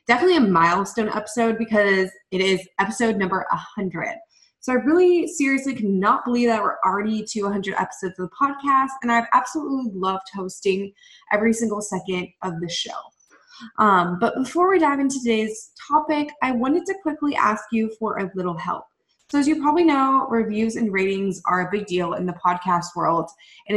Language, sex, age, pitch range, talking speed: English, female, 20-39, 190-250 Hz, 180 wpm